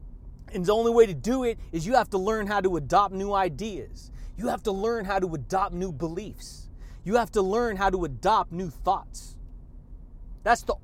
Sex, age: male, 30-49